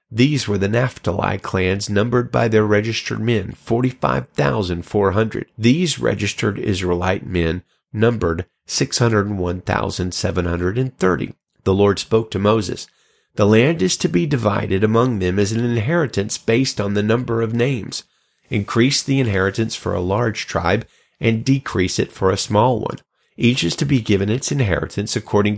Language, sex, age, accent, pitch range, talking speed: English, male, 40-59, American, 95-120 Hz, 145 wpm